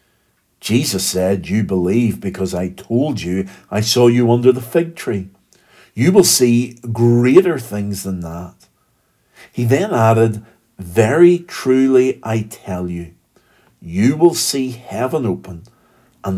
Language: English